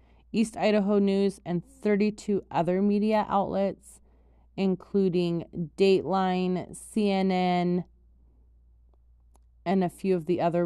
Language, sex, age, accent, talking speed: English, female, 30-49, American, 95 wpm